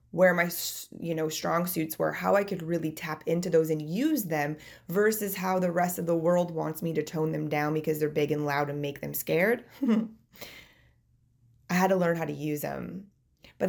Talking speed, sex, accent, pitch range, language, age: 210 wpm, female, American, 150-185 Hz, English, 20-39